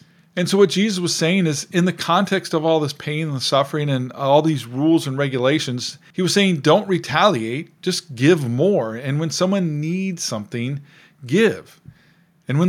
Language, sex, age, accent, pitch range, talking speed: English, male, 40-59, American, 125-170 Hz, 180 wpm